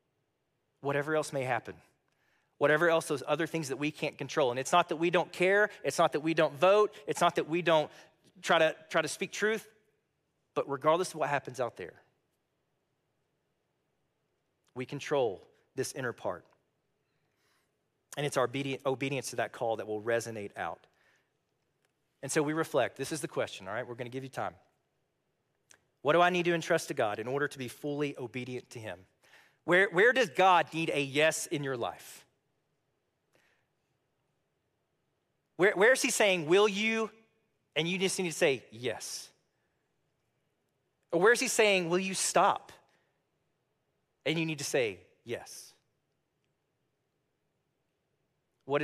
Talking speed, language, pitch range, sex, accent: 160 wpm, English, 135-175 Hz, male, American